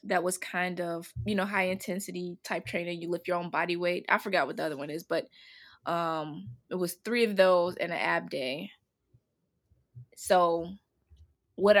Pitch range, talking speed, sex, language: 170-195 Hz, 185 wpm, female, English